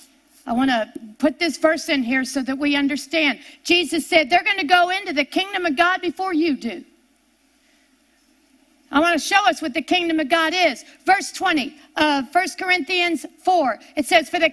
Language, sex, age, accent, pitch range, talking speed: English, female, 50-69, American, 285-345 Hz, 195 wpm